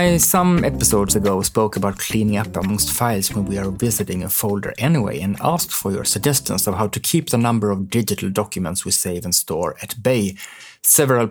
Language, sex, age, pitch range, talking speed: English, male, 30-49, 100-130 Hz, 200 wpm